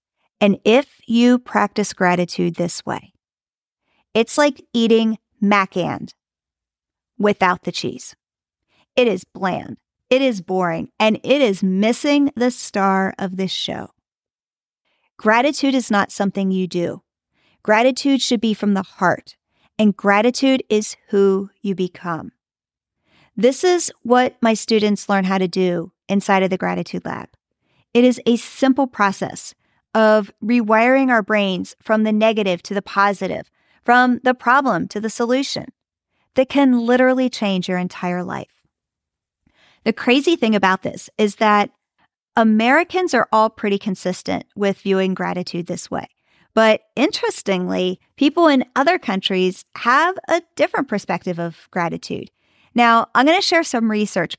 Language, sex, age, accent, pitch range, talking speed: English, female, 40-59, American, 190-250 Hz, 140 wpm